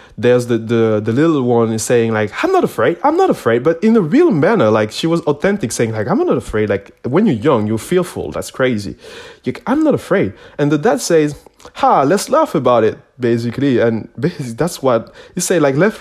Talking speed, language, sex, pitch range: 220 wpm, English, male, 115-165 Hz